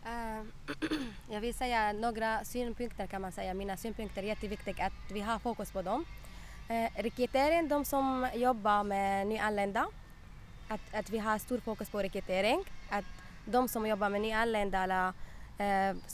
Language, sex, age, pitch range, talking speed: Swedish, female, 20-39, 195-235 Hz, 150 wpm